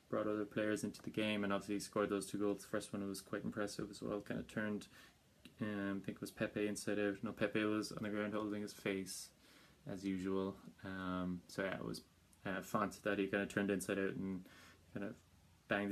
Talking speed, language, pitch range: 225 wpm, English, 95-105 Hz